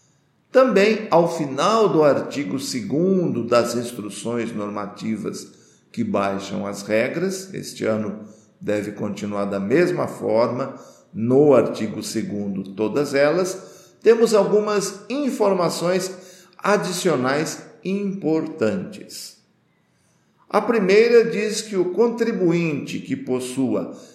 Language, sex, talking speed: Portuguese, male, 95 wpm